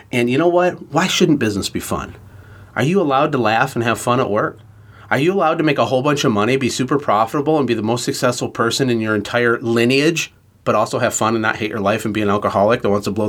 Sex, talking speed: male, 265 wpm